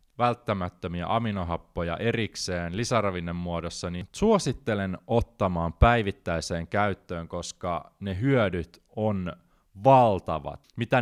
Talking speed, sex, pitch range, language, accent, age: 85 wpm, male, 80-105 Hz, Finnish, native, 20-39